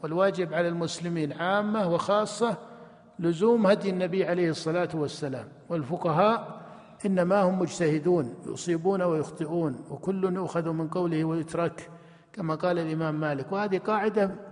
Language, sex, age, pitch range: Arabic, male, 50-69, 170-205 Hz